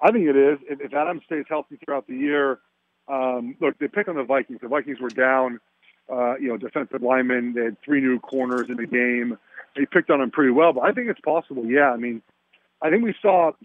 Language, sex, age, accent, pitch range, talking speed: English, male, 40-59, American, 130-200 Hz, 235 wpm